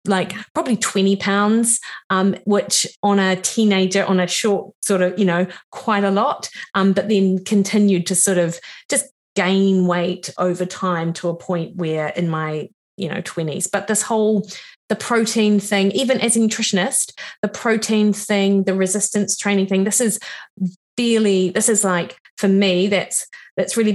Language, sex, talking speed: English, female, 170 wpm